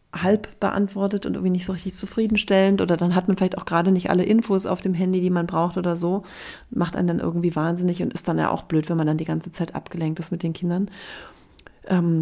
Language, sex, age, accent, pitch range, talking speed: German, female, 30-49, German, 170-195 Hz, 240 wpm